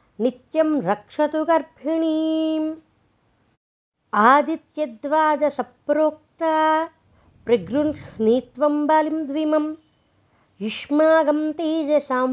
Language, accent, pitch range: Telugu, native, 270-310 Hz